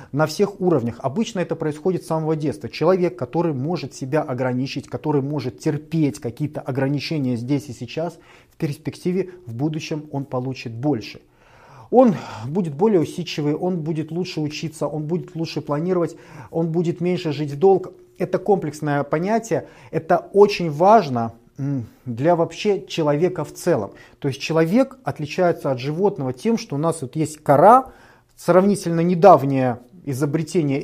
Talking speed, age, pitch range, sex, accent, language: 140 wpm, 30-49, 140-175 Hz, male, native, Russian